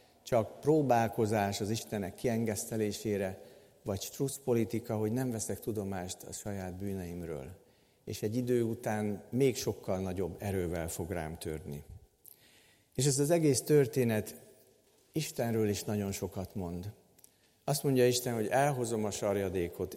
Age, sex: 50-69, male